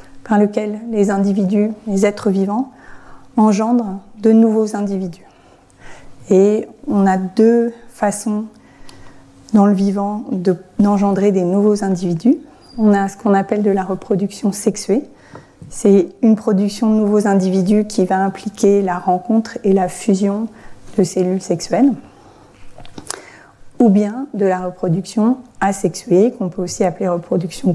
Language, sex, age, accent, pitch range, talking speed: French, female, 30-49, French, 195-225 Hz, 130 wpm